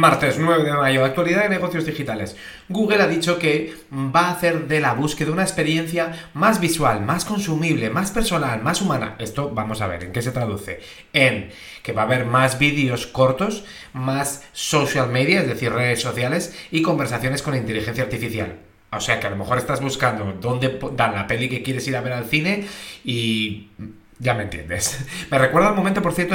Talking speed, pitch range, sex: 195 wpm, 125-170 Hz, male